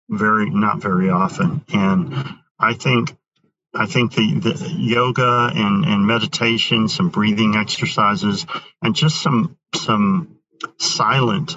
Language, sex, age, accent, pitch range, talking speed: English, male, 40-59, American, 115-180 Hz, 120 wpm